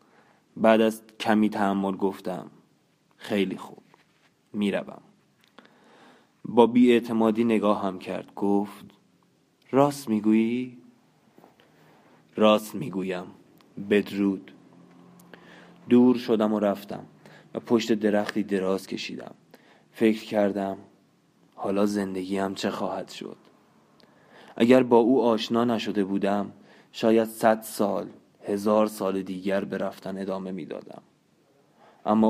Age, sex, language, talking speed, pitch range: 20-39, male, Persian, 100 wpm, 100-115 Hz